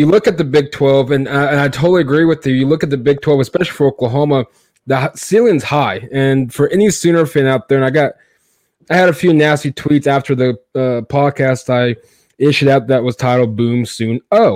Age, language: 20-39, English